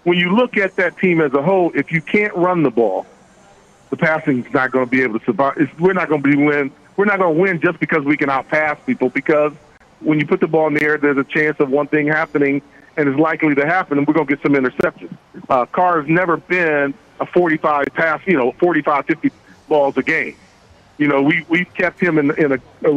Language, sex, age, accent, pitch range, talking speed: English, male, 40-59, American, 150-175 Hz, 245 wpm